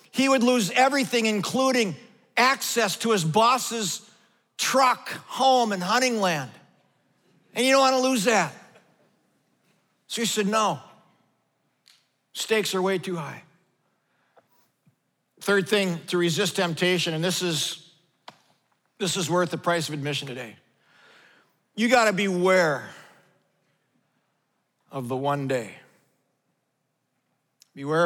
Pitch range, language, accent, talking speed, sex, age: 155-215 Hz, English, American, 120 wpm, male, 50-69